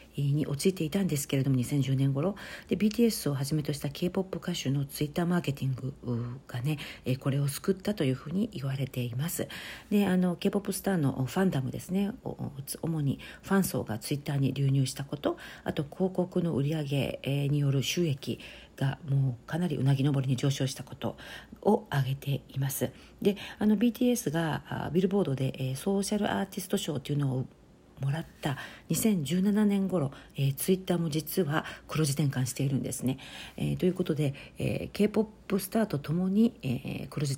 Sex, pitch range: female, 135-180 Hz